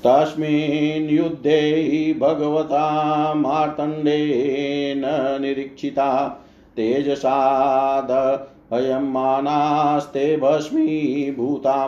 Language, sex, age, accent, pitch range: Hindi, male, 50-69, native, 135-150 Hz